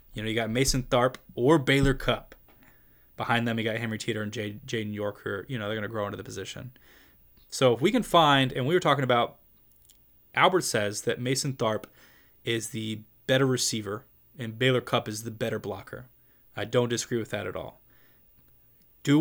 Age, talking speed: 20-39, 190 wpm